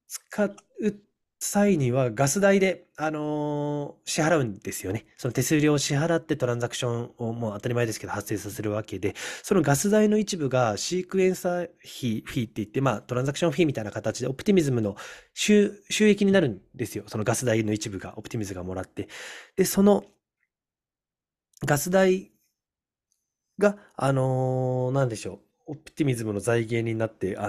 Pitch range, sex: 105-165 Hz, male